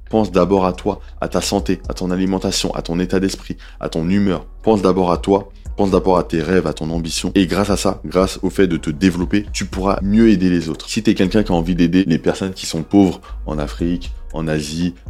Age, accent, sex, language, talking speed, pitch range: 20-39, French, male, French, 245 wpm, 80-95 Hz